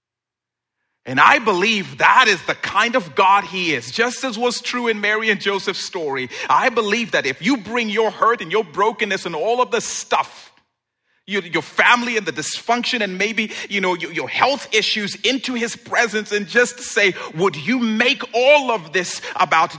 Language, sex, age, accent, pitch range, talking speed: English, male, 40-59, American, 145-220 Hz, 185 wpm